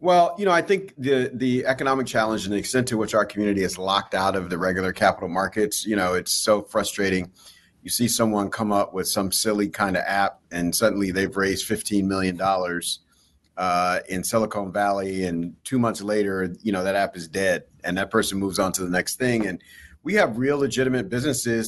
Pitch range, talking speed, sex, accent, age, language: 95-120 Hz, 210 wpm, male, American, 40-59, English